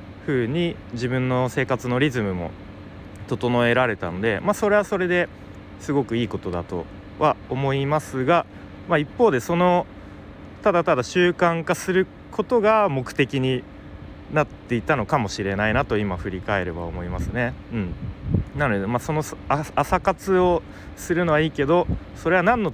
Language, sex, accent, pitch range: Japanese, male, native, 100-155 Hz